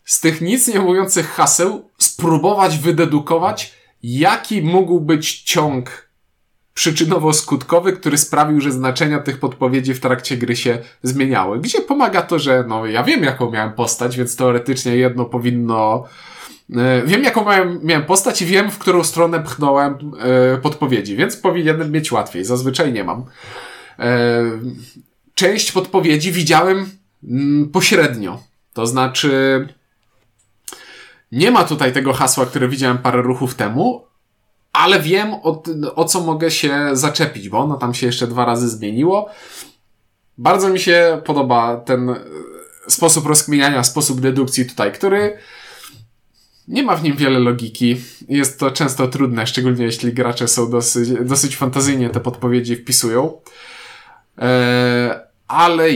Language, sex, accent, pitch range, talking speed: Polish, male, native, 120-165 Hz, 130 wpm